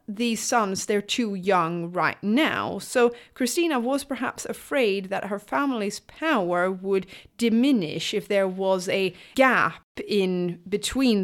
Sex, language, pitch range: female, English, 185-235 Hz